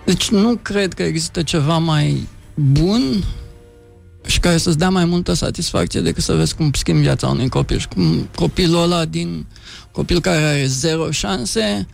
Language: Romanian